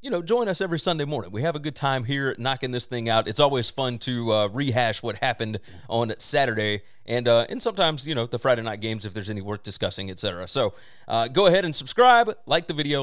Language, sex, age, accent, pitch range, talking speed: English, male, 30-49, American, 115-150 Hz, 240 wpm